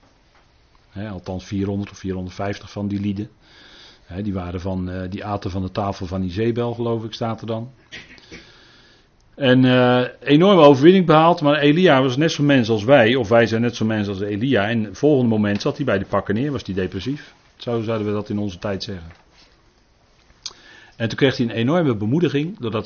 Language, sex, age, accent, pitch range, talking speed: Dutch, male, 40-59, Dutch, 100-135 Hz, 200 wpm